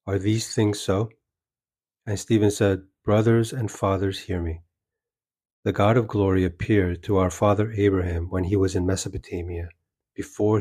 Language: English